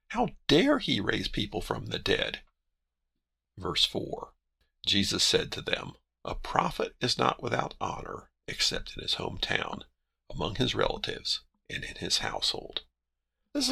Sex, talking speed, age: male, 145 wpm, 50-69